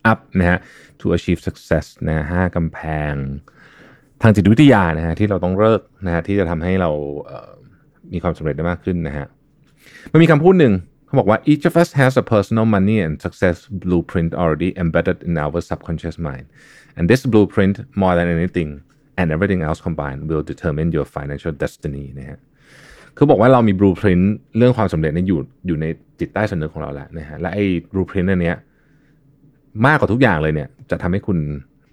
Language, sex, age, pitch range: Thai, male, 30-49, 85-115 Hz